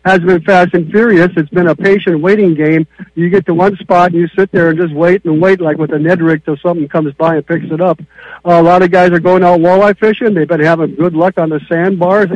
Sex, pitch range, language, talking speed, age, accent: male, 160-190 Hz, English, 265 wpm, 60-79, American